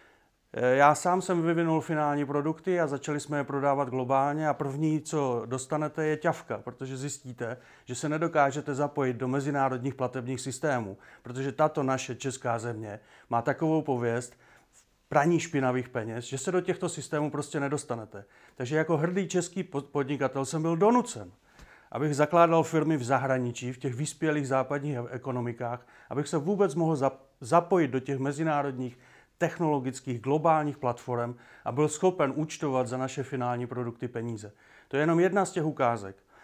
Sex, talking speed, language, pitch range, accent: male, 150 wpm, Czech, 125-155 Hz, native